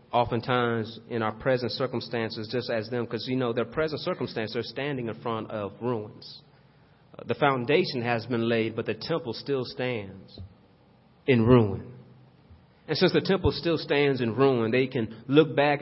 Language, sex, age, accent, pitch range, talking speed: English, male, 30-49, American, 130-155 Hz, 165 wpm